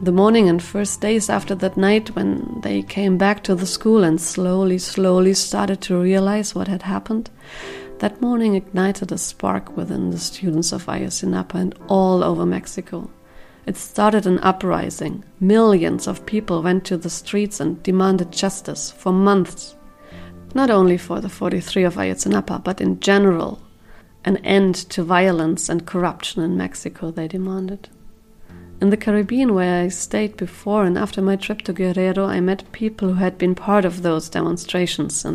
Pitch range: 175-200 Hz